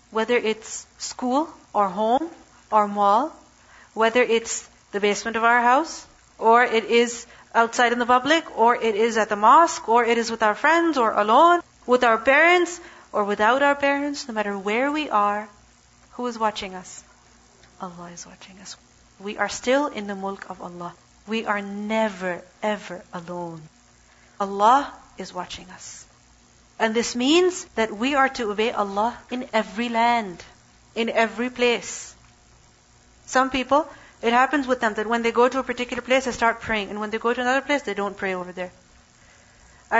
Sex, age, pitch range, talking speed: female, 40-59, 205-260 Hz, 175 wpm